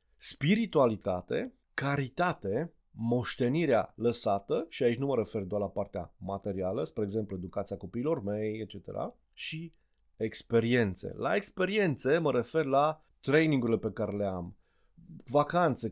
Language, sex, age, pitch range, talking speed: Romanian, male, 30-49, 110-150 Hz, 120 wpm